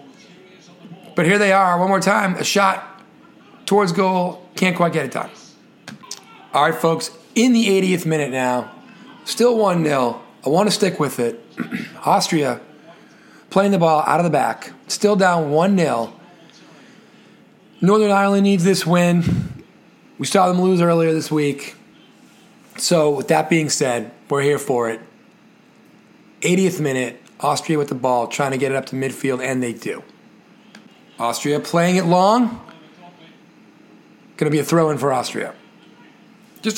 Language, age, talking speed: English, 30-49, 150 wpm